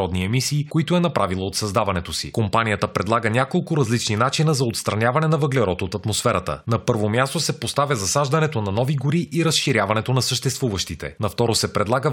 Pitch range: 105-140 Hz